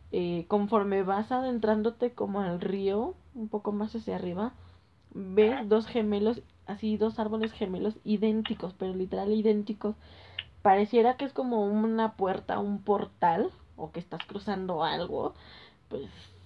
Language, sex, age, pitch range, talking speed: Spanish, female, 10-29, 185-220 Hz, 135 wpm